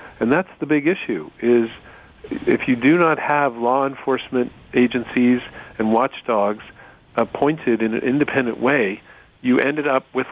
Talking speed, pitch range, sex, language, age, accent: 145 wpm, 110-125 Hz, male, English, 40-59, American